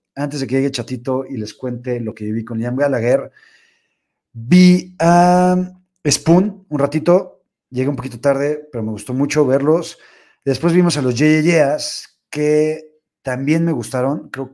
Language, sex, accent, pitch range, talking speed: Spanish, male, Mexican, 115-155 Hz, 160 wpm